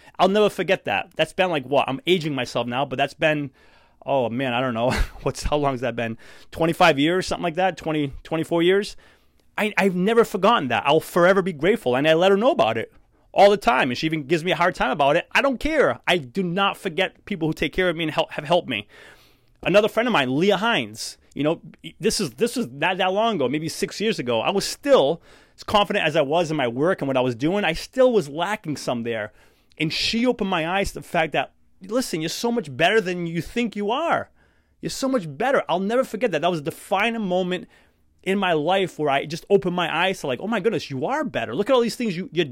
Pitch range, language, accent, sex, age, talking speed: 160-215 Hz, English, American, male, 30-49, 255 wpm